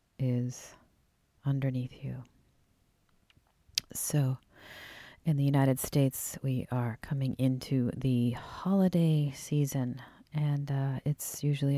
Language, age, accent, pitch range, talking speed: English, 40-59, American, 130-145 Hz, 95 wpm